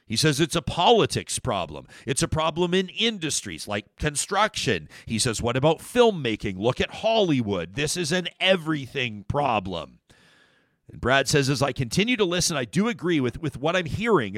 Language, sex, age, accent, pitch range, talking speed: English, male, 40-59, American, 135-180 Hz, 175 wpm